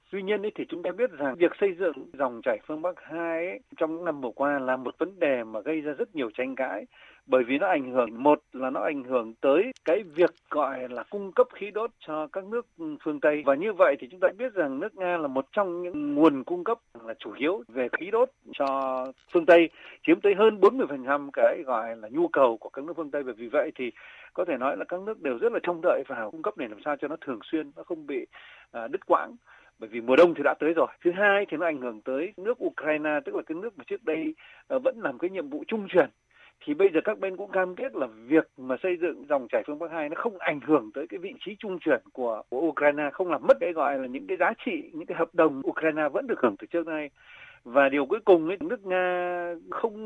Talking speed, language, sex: 260 wpm, Vietnamese, male